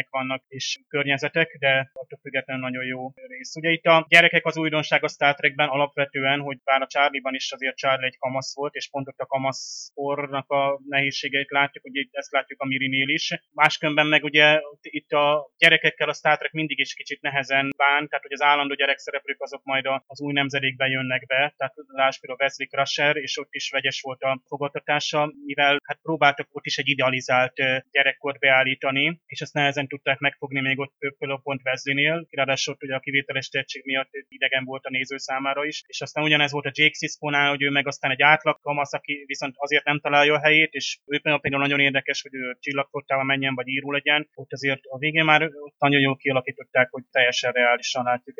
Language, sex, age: Hungarian, male, 20-39